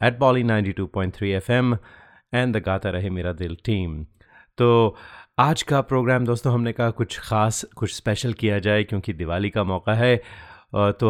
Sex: male